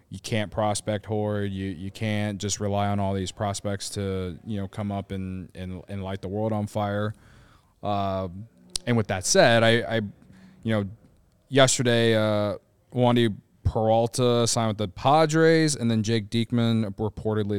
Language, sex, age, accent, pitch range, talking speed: English, male, 20-39, American, 95-110 Hz, 165 wpm